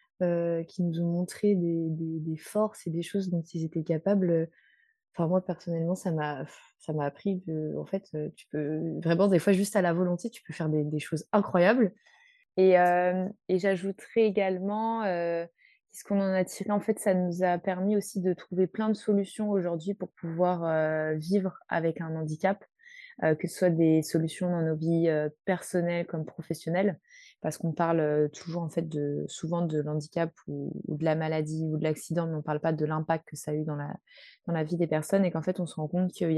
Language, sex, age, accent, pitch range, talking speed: French, female, 20-39, French, 160-190 Hz, 215 wpm